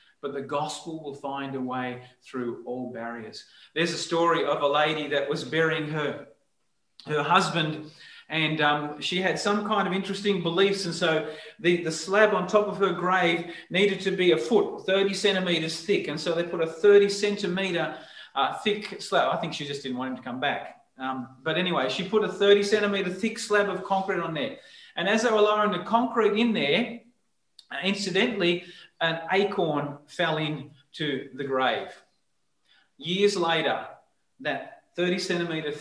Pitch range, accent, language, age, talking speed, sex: 155-195 Hz, Australian, English, 40-59, 175 wpm, male